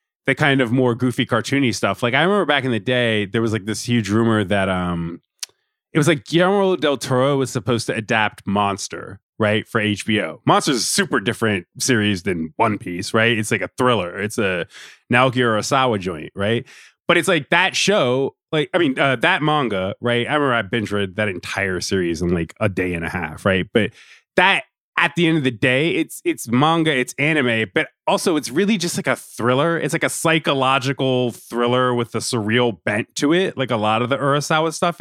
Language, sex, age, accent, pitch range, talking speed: English, male, 20-39, American, 110-150 Hz, 210 wpm